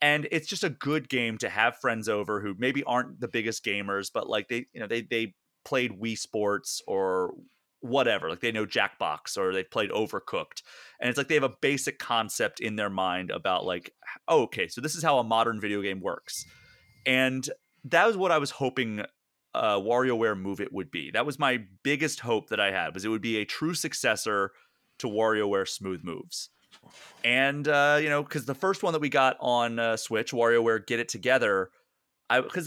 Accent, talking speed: American, 205 wpm